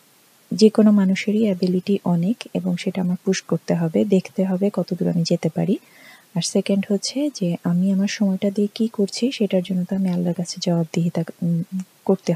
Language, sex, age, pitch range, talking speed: Bengali, female, 30-49, 190-220 Hz, 180 wpm